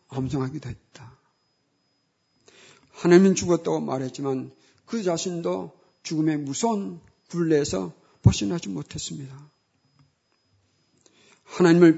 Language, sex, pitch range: Korean, male, 135-180 Hz